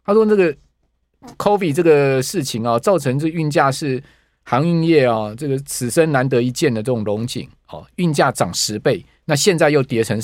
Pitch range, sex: 115-150 Hz, male